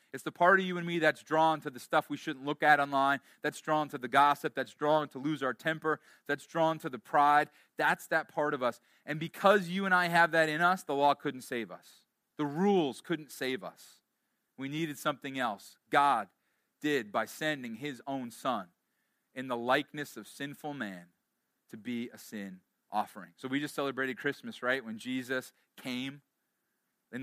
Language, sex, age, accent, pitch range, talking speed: English, male, 30-49, American, 130-160 Hz, 195 wpm